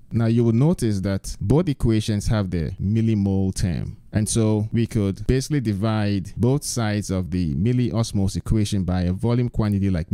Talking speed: 165 wpm